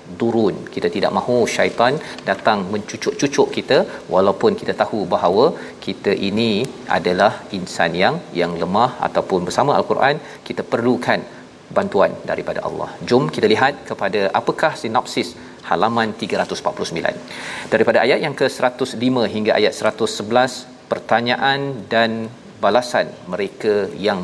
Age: 40-59